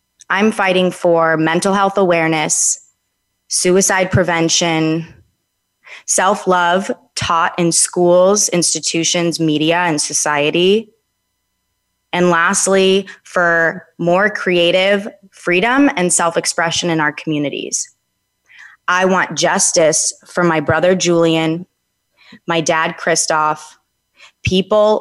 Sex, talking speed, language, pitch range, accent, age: female, 90 wpm, English, 160-190 Hz, American, 20-39